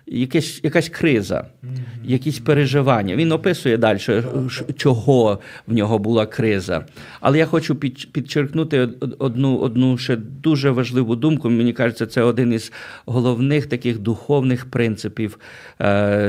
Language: Ukrainian